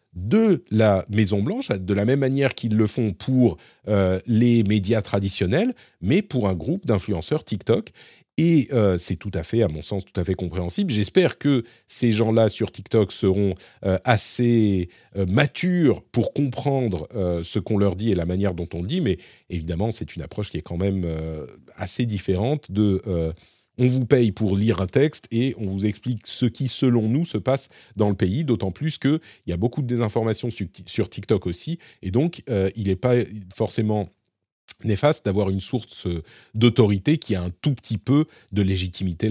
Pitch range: 95-120 Hz